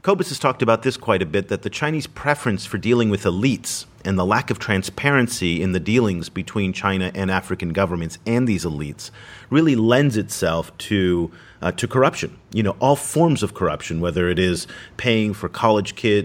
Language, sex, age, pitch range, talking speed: English, male, 40-59, 95-120 Hz, 190 wpm